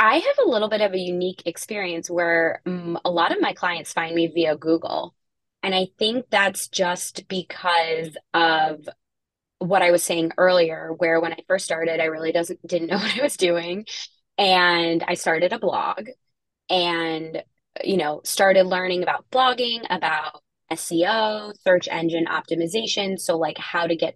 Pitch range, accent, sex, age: 165-195 Hz, American, female, 20-39